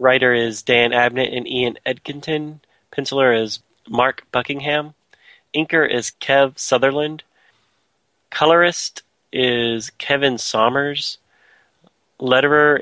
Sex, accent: male, American